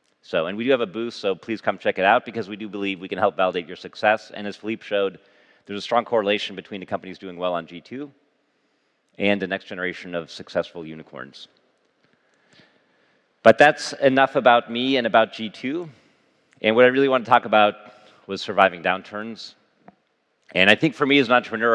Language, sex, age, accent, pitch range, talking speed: English, male, 40-59, American, 90-115 Hz, 200 wpm